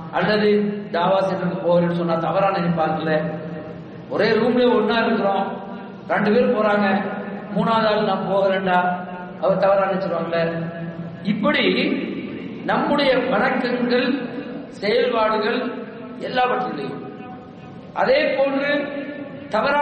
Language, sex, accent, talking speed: English, male, Indian, 75 wpm